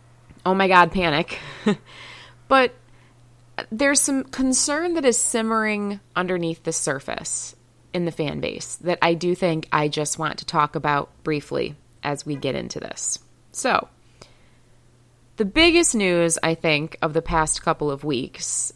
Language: English